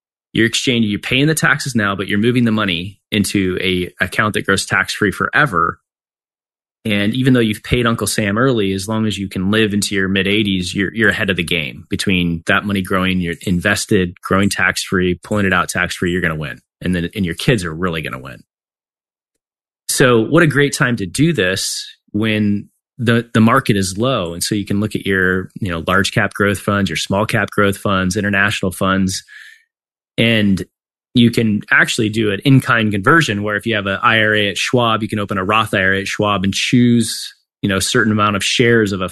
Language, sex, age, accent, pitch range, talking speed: English, male, 30-49, American, 95-120 Hz, 205 wpm